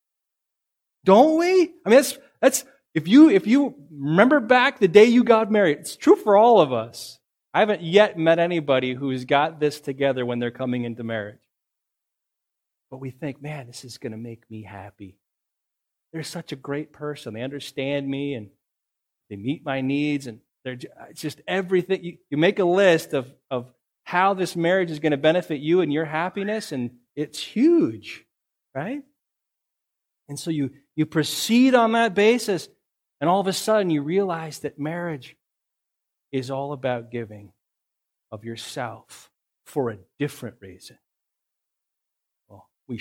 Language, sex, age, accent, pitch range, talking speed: English, male, 30-49, American, 130-195 Hz, 165 wpm